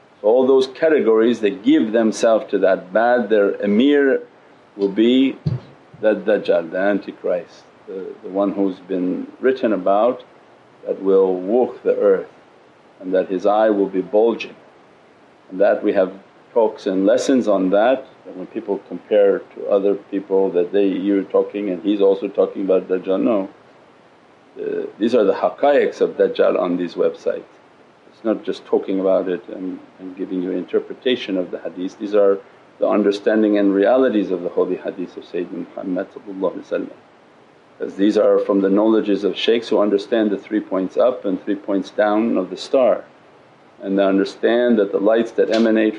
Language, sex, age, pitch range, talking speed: English, male, 50-69, 95-130 Hz, 170 wpm